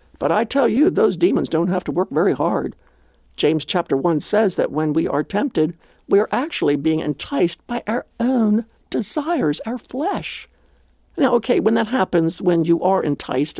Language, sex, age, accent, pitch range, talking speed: English, male, 60-79, American, 150-255 Hz, 180 wpm